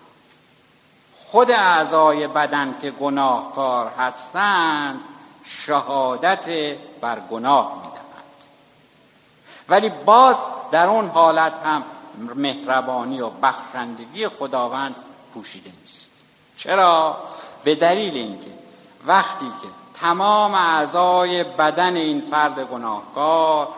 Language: Persian